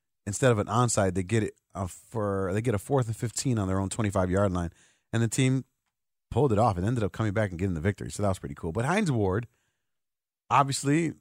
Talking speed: 240 wpm